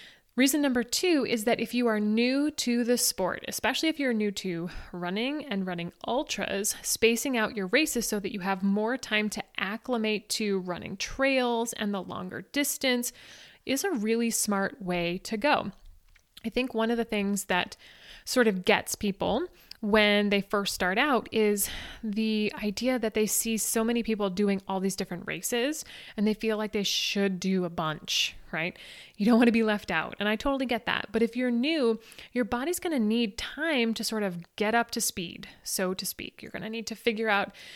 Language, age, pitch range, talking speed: English, 20-39, 200-240 Hz, 200 wpm